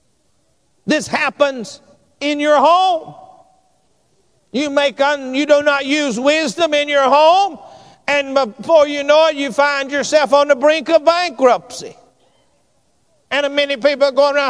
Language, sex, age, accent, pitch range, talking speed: English, male, 50-69, American, 225-295 Hz, 140 wpm